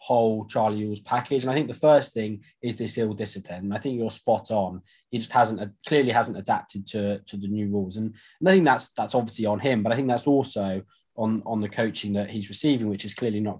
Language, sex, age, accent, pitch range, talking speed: English, male, 20-39, British, 105-135 Hz, 250 wpm